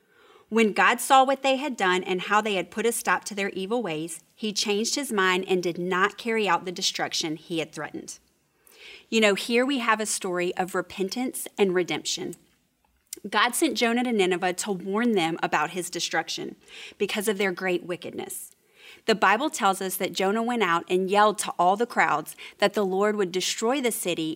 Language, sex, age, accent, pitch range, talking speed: English, female, 30-49, American, 180-245 Hz, 195 wpm